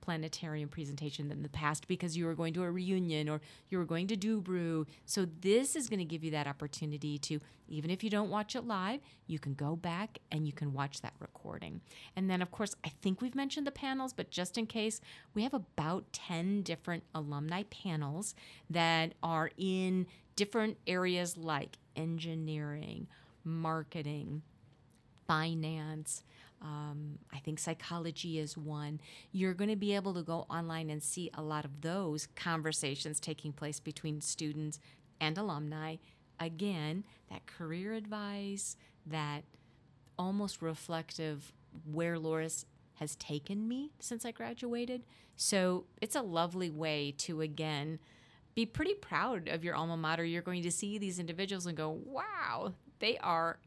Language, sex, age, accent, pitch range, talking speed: English, female, 40-59, American, 150-185 Hz, 160 wpm